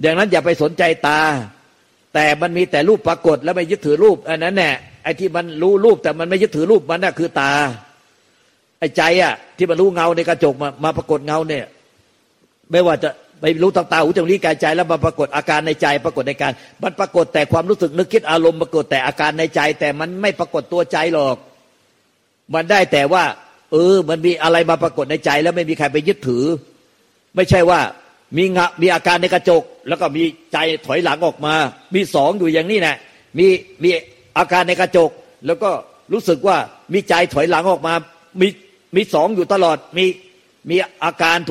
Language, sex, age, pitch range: Thai, male, 50-69, 150-180 Hz